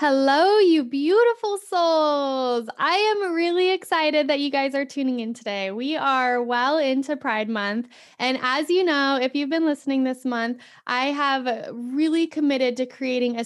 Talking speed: 170 wpm